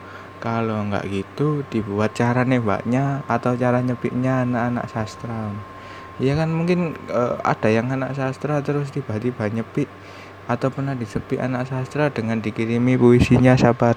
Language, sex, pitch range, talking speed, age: Indonesian, male, 100-125 Hz, 130 wpm, 20-39